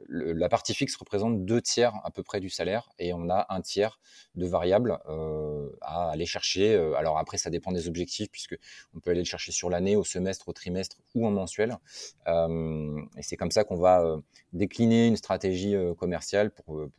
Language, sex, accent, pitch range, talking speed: French, male, French, 85-105 Hz, 185 wpm